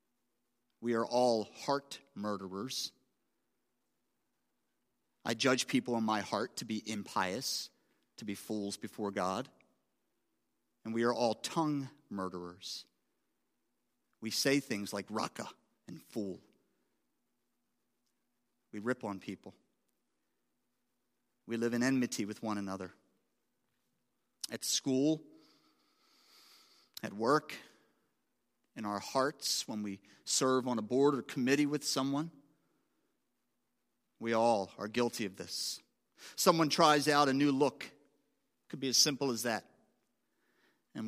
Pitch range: 105-135 Hz